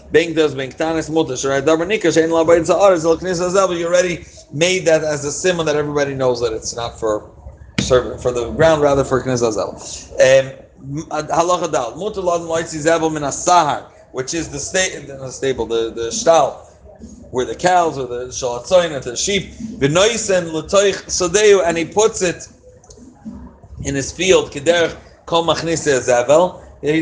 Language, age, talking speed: English, 30-49, 100 wpm